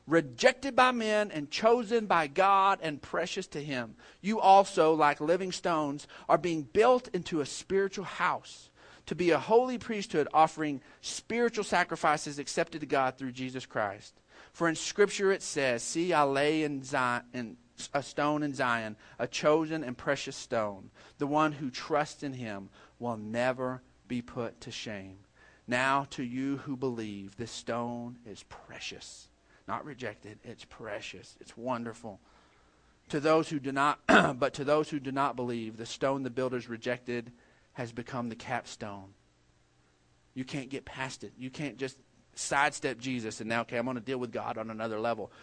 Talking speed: 170 wpm